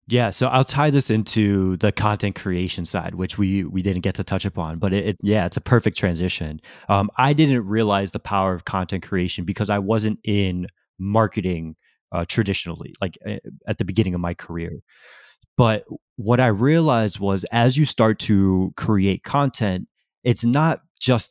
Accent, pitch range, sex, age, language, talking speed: American, 95-115 Hz, male, 20-39, English, 180 wpm